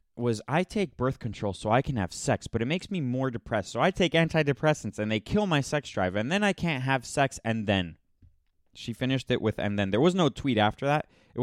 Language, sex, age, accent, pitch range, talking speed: English, male, 20-39, American, 105-150 Hz, 245 wpm